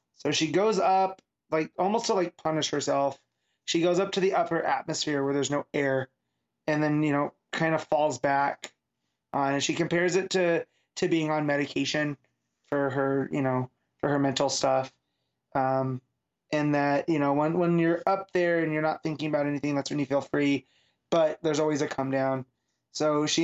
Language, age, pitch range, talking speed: English, 20-39, 135-170 Hz, 195 wpm